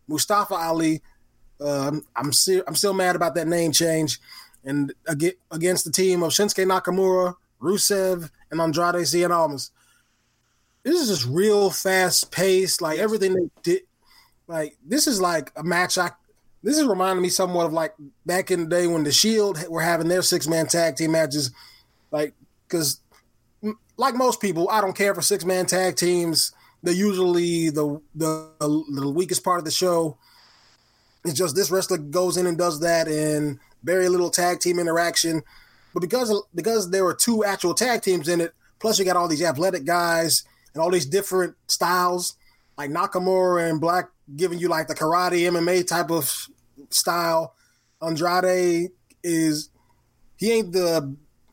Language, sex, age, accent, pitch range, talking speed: English, male, 20-39, American, 160-185 Hz, 165 wpm